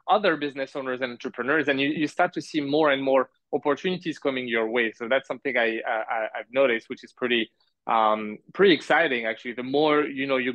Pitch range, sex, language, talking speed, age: 125-150 Hz, male, English, 210 wpm, 20-39